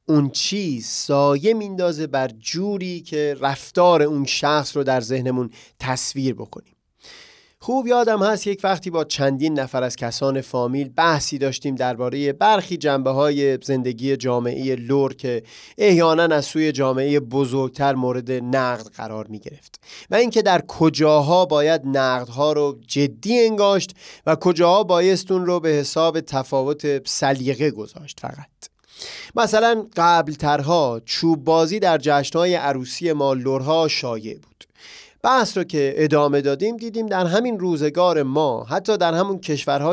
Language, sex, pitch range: Persian, male, 135-175 Hz